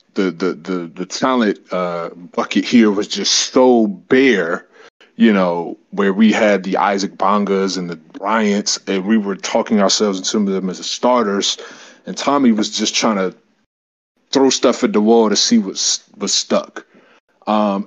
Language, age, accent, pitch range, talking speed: English, 20-39, American, 100-125 Hz, 170 wpm